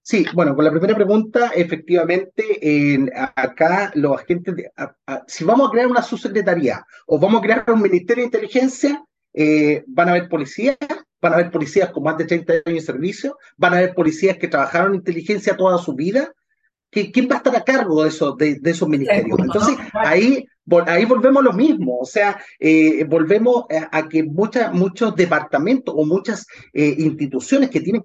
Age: 30-49